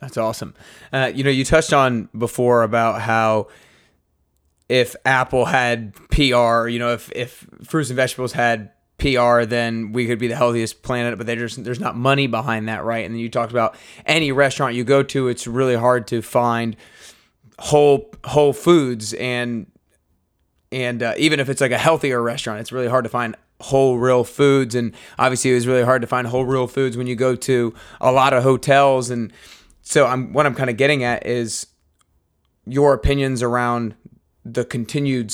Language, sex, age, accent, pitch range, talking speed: English, male, 20-39, American, 120-135 Hz, 185 wpm